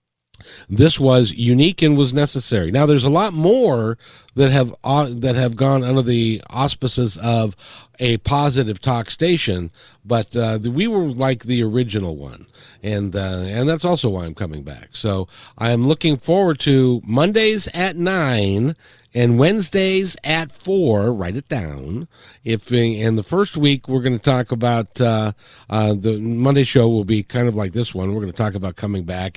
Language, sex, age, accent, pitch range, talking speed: English, male, 50-69, American, 100-135 Hz, 180 wpm